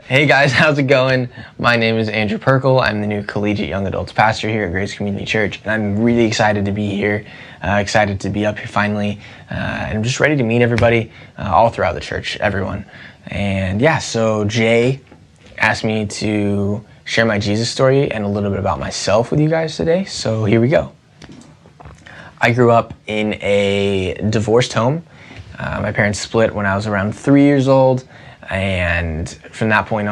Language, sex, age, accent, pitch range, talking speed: English, male, 10-29, American, 100-120 Hz, 195 wpm